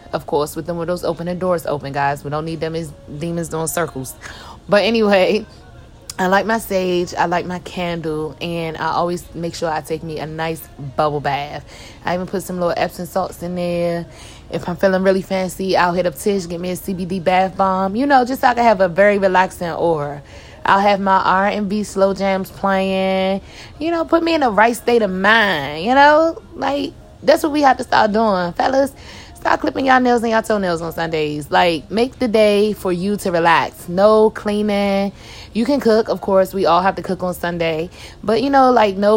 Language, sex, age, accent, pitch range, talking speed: English, female, 20-39, American, 170-210 Hz, 215 wpm